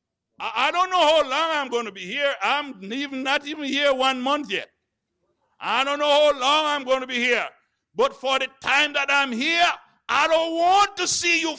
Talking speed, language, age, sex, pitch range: 210 wpm, English, 60-79, male, 215-300 Hz